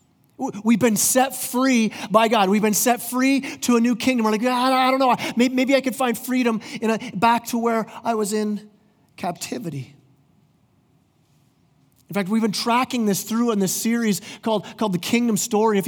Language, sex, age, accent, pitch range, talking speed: English, male, 30-49, American, 175-235 Hz, 185 wpm